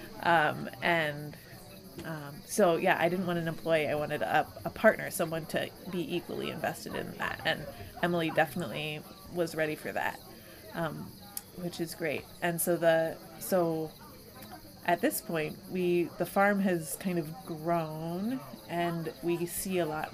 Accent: American